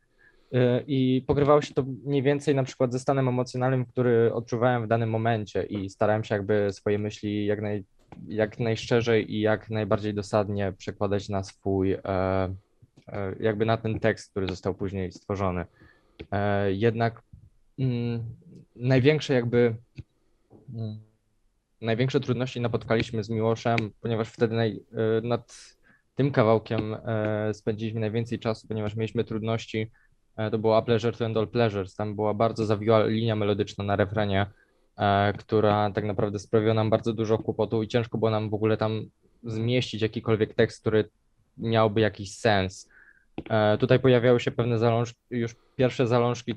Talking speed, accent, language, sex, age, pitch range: 135 wpm, native, Polish, male, 20-39, 105-120 Hz